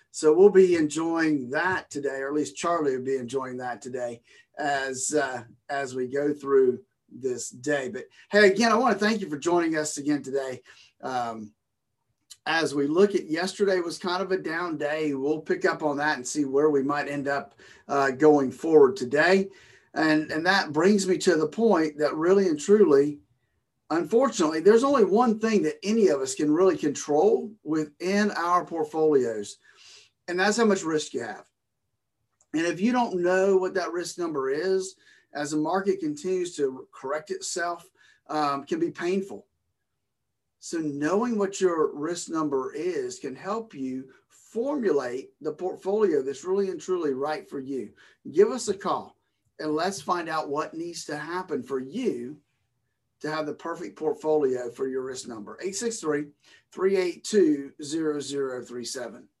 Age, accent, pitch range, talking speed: 50-69, American, 140-205 Hz, 165 wpm